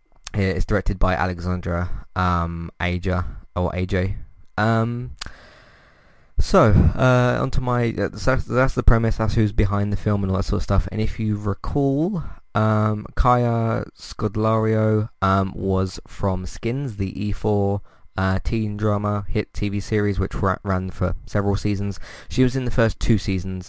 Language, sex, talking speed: English, male, 155 wpm